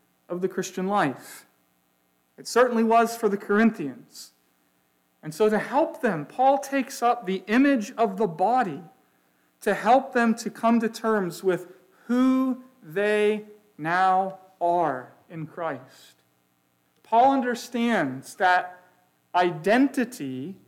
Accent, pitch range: American, 165-230 Hz